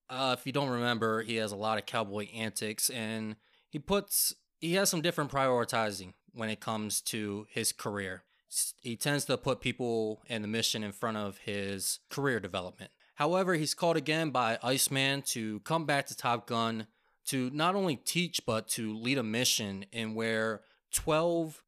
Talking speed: 175 wpm